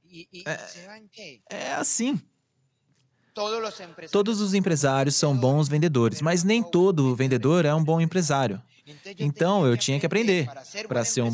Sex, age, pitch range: male, 20-39, 135-195 Hz